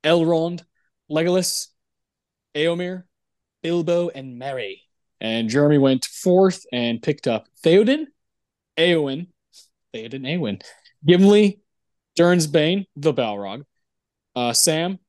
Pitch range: 120-170 Hz